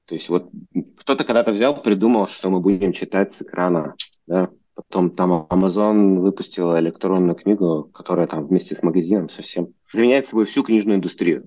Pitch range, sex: 95-110 Hz, male